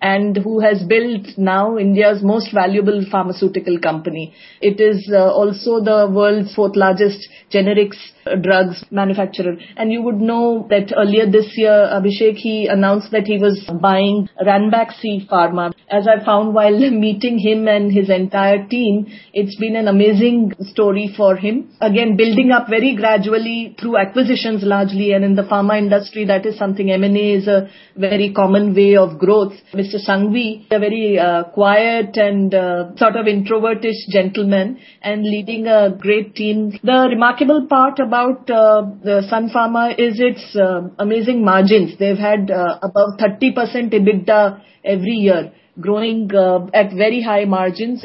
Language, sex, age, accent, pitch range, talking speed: English, female, 30-49, Indian, 200-225 Hz, 155 wpm